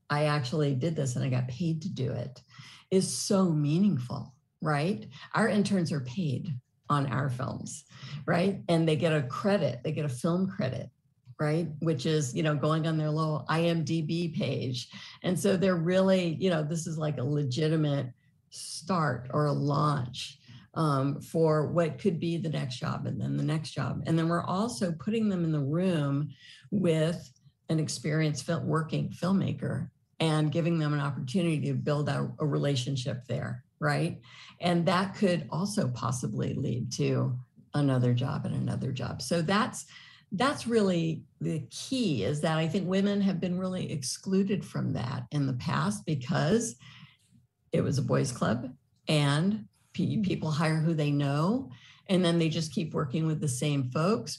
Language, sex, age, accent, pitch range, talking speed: English, female, 50-69, American, 140-175 Hz, 170 wpm